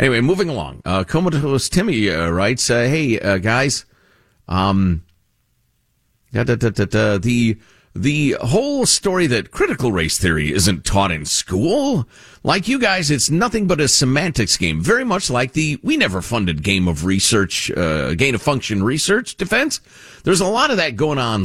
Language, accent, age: English, American, 50-69